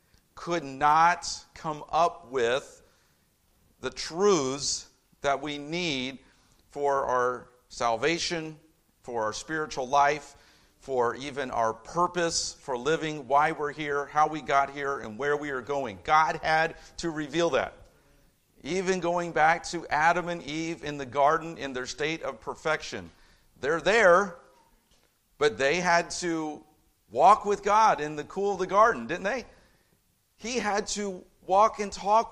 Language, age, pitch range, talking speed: English, 50-69, 150-210 Hz, 145 wpm